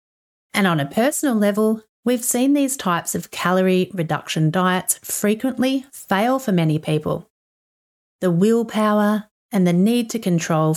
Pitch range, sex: 170-230 Hz, female